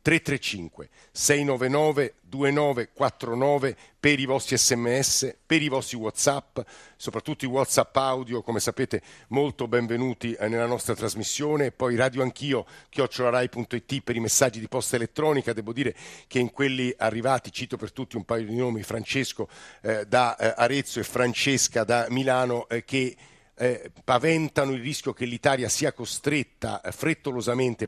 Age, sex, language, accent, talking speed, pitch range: 50-69, male, Italian, native, 140 wpm, 115-135 Hz